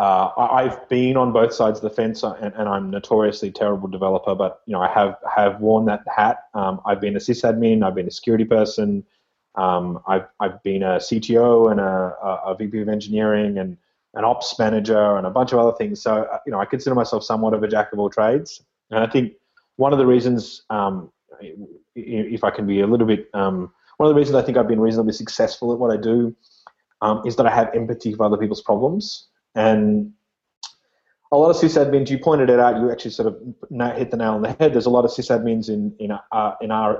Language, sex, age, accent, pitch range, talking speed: English, male, 20-39, Australian, 105-125 Hz, 225 wpm